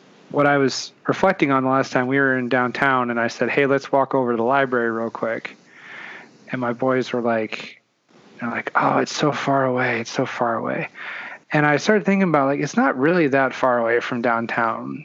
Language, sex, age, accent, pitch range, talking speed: English, male, 30-49, American, 120-135 Hz, 210 wpm